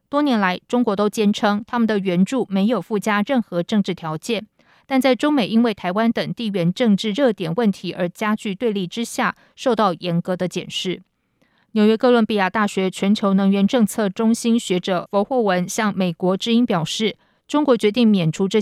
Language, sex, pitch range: Chinese, female, 180-230 Hz